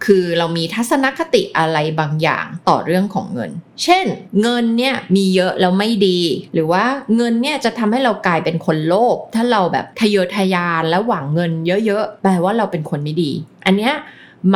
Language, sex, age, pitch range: Thai, female, 20-39, 165-215 Hz